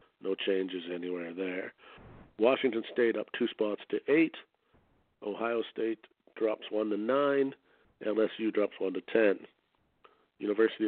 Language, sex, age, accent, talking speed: English, male, 50-69, American, 125 wpm